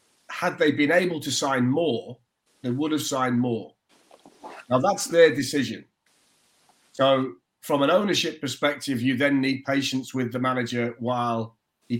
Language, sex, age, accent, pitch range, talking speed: English, male, 40-59, British, 120-145 Hz, 150 wpm